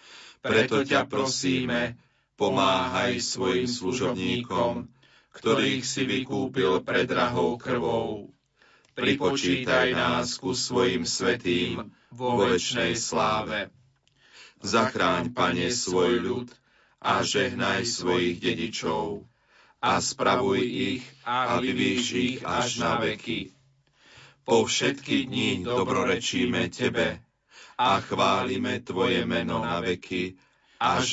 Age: 40-59